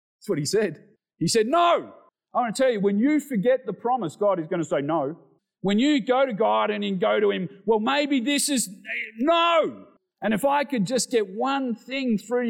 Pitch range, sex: 200-275 Hz, male